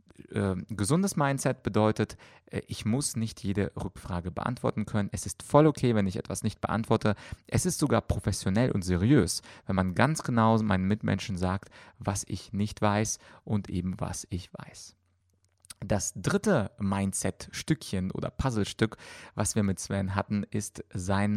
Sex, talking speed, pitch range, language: male, 155 wpm, 100-120 Hz, German